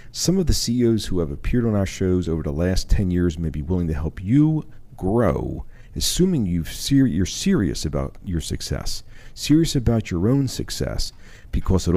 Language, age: English, 50-69